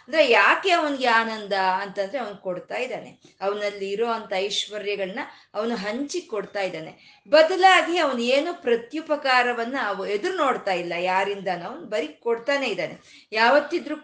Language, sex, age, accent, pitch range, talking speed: Kannada, female, 20-39, native, 195-245 Hz, 115 wpm